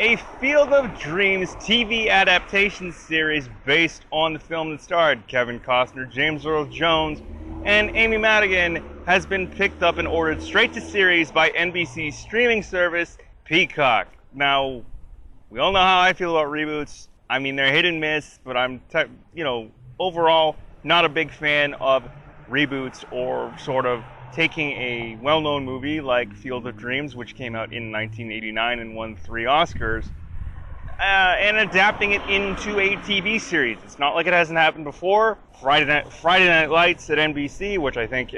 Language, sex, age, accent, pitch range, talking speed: English, male, 30-49, American, 125-170 Hz, 165 wpm